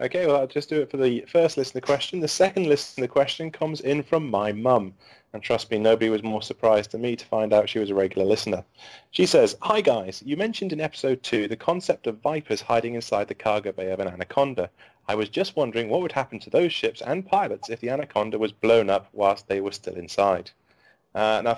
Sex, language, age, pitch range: male, English, 30-49, 100-130 Hz